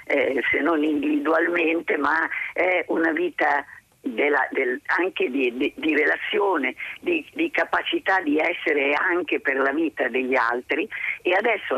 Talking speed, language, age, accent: 125 wpm, Italian, 40-59, native